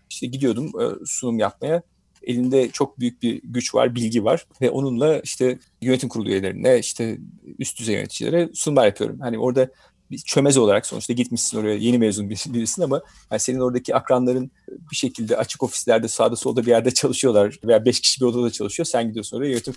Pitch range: 120-155 Hz